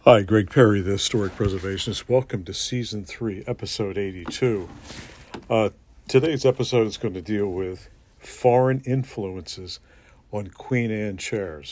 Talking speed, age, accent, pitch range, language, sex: 135 wpm, 60-79, American, 95-120 Hz, English, male